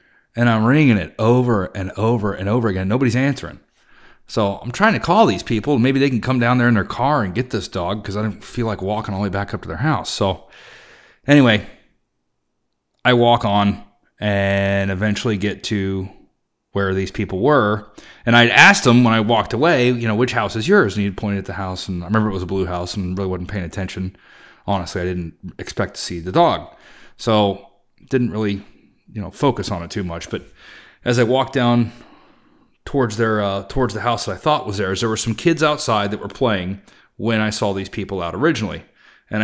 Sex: male